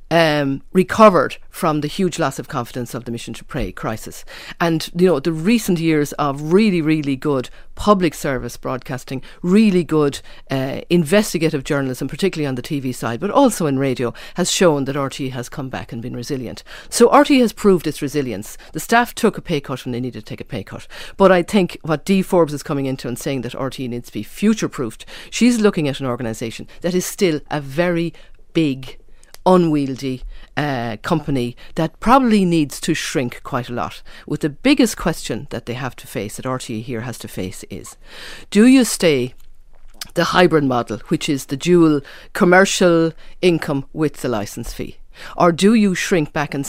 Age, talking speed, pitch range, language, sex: 50-69, 190 wpm, 125-175 Hz, English, female